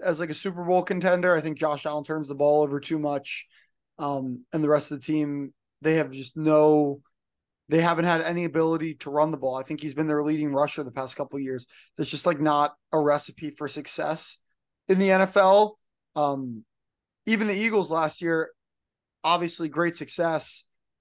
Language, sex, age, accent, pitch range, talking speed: English, male, 20-39, American, 145-170 Hz, 195 wpm